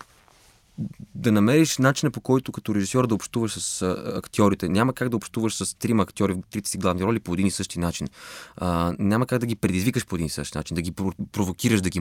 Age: 20-39